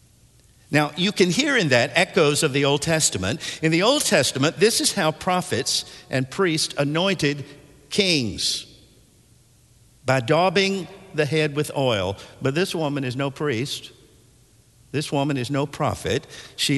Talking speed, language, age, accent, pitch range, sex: 145 wpm, English, 50-69, American, 120-155 Hz, male